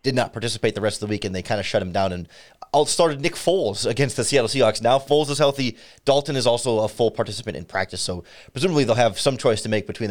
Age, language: 30-49, English